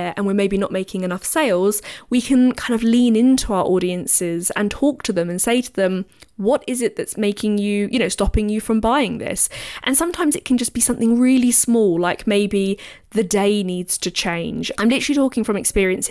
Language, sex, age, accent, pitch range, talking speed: English, female, 20-39, British, 190-245 Hz, 210 wpm